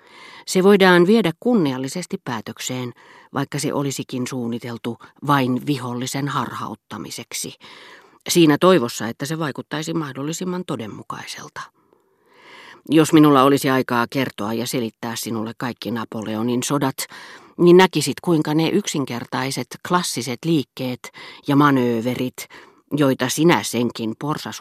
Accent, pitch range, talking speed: native, 125-165 Hz, 105 wpm